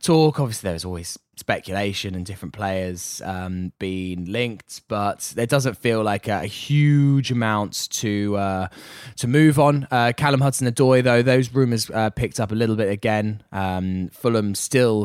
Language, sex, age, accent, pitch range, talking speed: English, male, 10-29, British, 95-120 Hz, 165 wpm